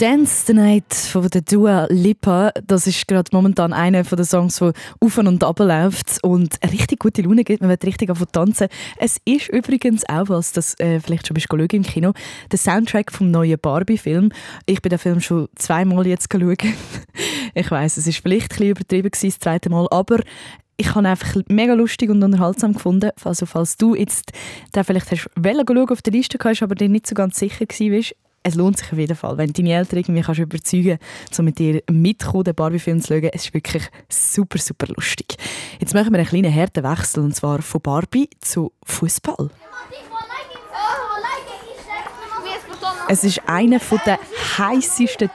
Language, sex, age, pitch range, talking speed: German, female, 10-29, 170-215 Hz, 185 wpm